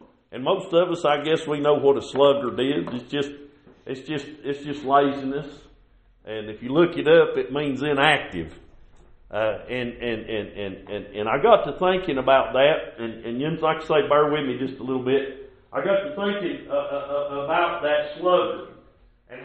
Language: English